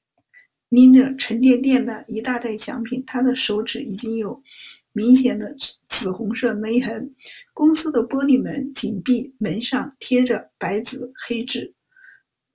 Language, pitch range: Chinese, 240-275 Hz